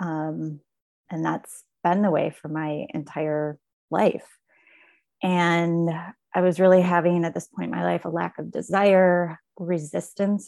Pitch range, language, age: 155-180 Hz, English, 30-49